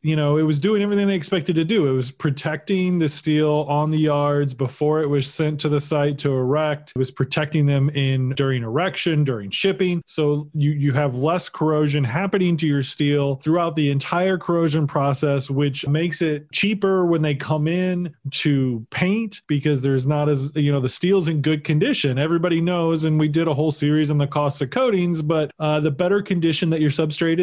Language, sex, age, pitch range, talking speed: English, male, 20-39, 140-165 Hz, 205 wpm